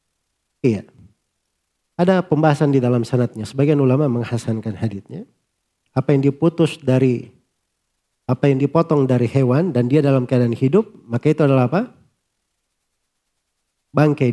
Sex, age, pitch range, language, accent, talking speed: male, 40-59, 120-155 Hz, Indonesian, native, 120 wpm